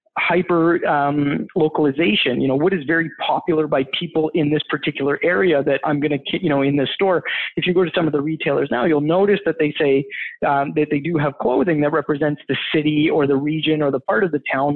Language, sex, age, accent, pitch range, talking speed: English, male, 20-39, American, 145-170 Hz, 230 wpm